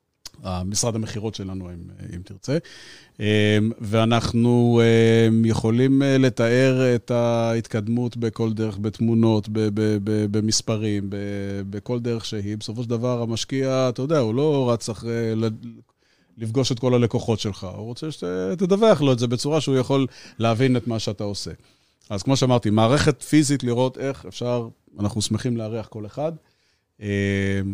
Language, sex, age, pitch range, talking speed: Hebrew, male, 30-49, 105-125 Hz, 140 wpm